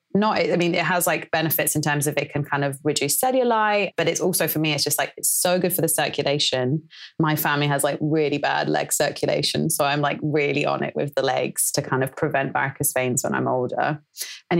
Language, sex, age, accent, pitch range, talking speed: English, female, 30-49, British, 140-175 Hz, 235 wpm